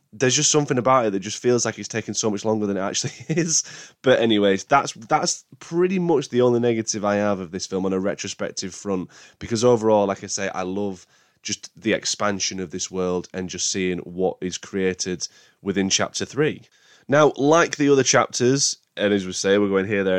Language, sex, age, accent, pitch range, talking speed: English, male, 20-39, British, 100-125 Hz, 210 wpm